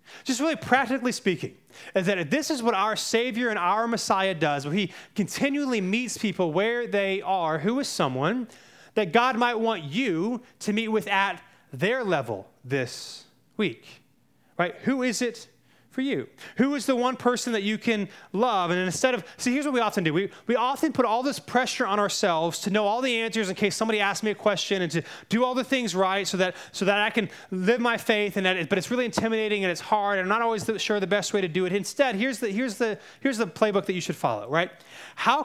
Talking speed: 230 wpm